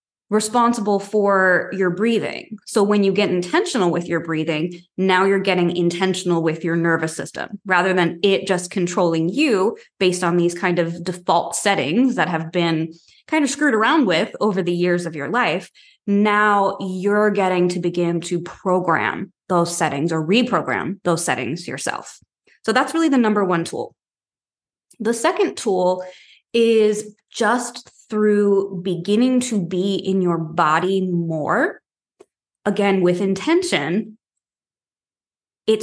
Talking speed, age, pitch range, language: 140 wpm, 20-39, 175-215 Hz, English